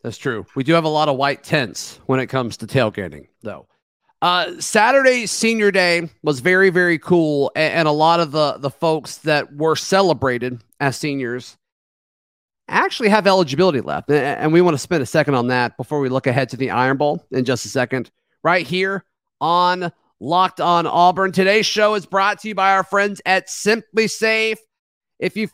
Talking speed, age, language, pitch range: 190 wpm, 40-59, English, 145-185 Hz